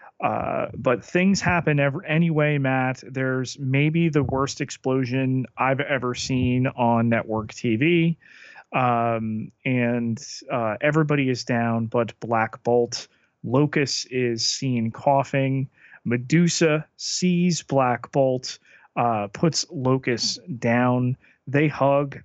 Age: 30-49